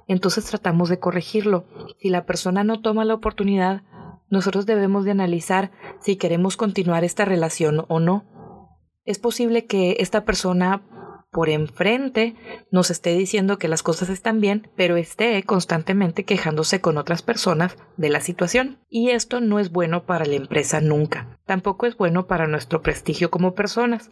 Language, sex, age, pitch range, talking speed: English, female, 30-49, 175-215 Hz, 160 wpm